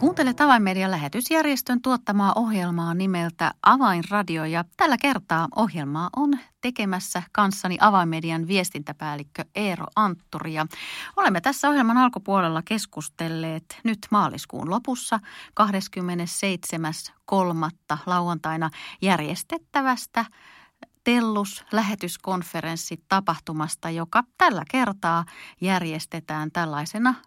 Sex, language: female, Finnish